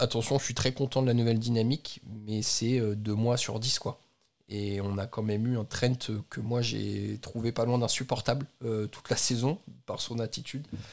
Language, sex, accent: French, male, French